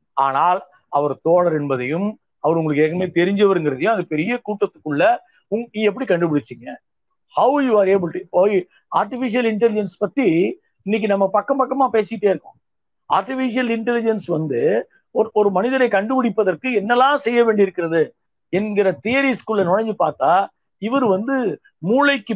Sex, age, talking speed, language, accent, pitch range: male, 50-69, 120 wpm, Tamil, native, 180-250 Hz